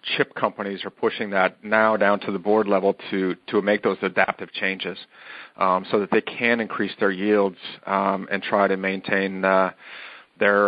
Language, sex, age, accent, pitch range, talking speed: English, male, 40-59, American, 100-120 Hz, 180 wpm